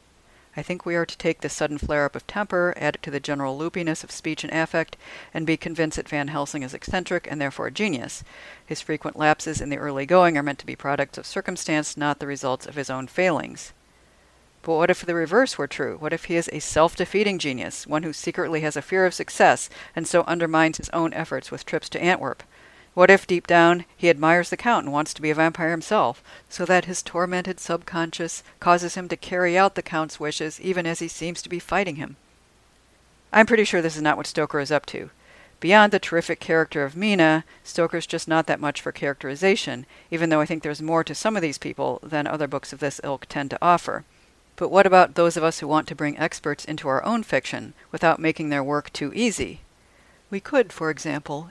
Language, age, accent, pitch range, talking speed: English, 50-69, American, 145-175 Hz, 225 wpm